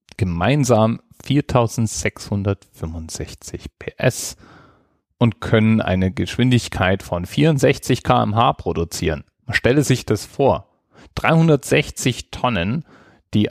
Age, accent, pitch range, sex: 40-59, German, 90-125 Hz, male